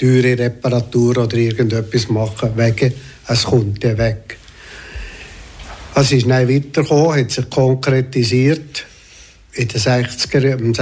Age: 60-79